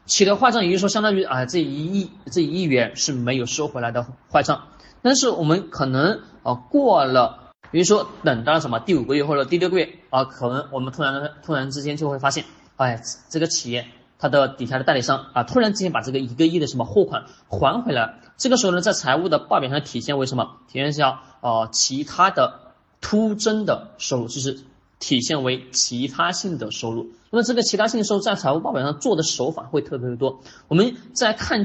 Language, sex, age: Chinese, male, 20-39